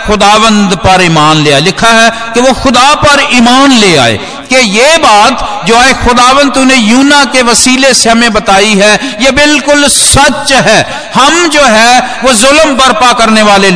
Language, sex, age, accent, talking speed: Hindi, male, 50-69, native, 150 wpm